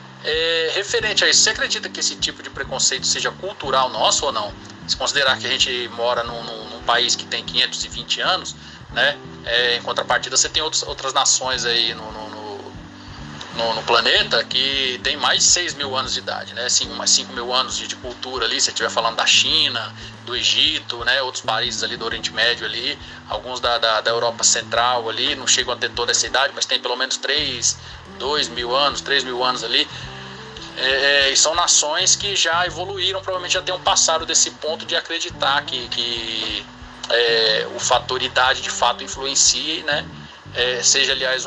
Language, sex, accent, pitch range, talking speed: Portuguese, male, Brazilian, 115-140 Hz, 200 wpm